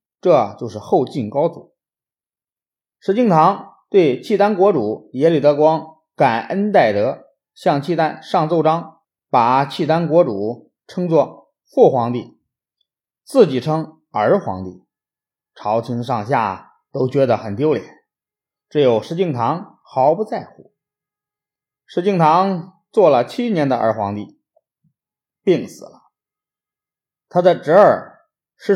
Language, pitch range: Chinese, 125-185 Hz